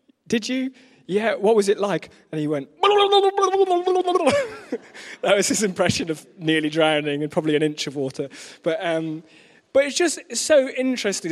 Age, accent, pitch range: 20-39, British, 135-215 Hz